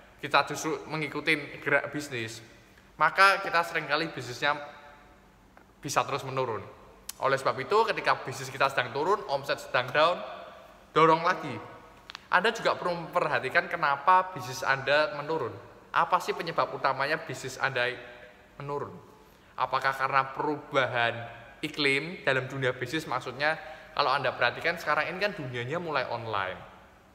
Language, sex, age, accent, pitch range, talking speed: Indonesian, male, 20-39, native, 125-160 Hz, 125 wpm